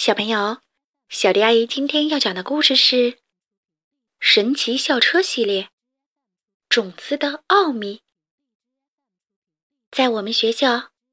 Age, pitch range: 20-39, 230-310 Hz